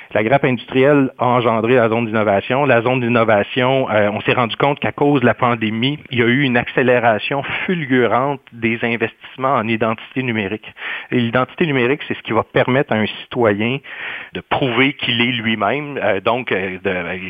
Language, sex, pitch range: French, male, 110-130 Hz